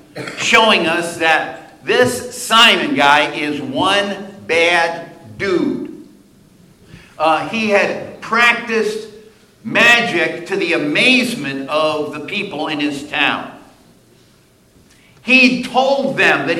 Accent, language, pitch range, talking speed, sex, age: American, English, 150-235 Hz, 100 wpm, male, 50-69